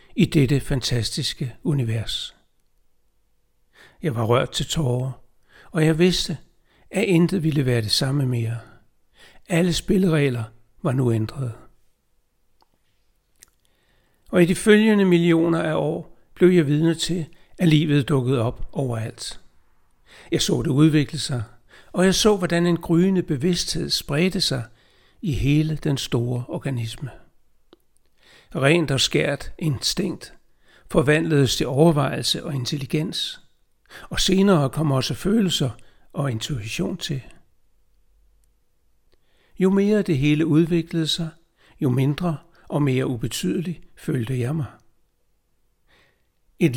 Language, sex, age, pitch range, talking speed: Danish, male, 60-79, 120-165 Hz, 115 wpm